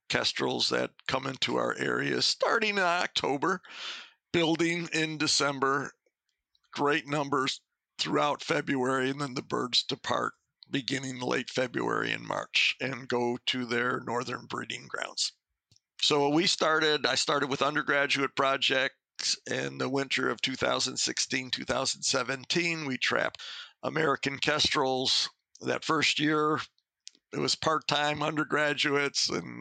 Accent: American